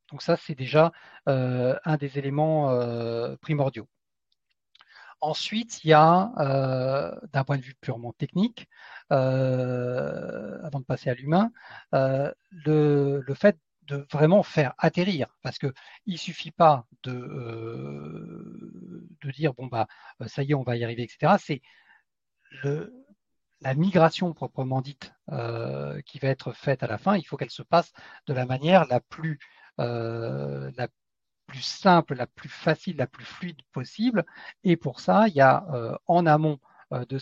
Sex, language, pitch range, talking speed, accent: male, French, 125-160 Hz, 160 wpm, French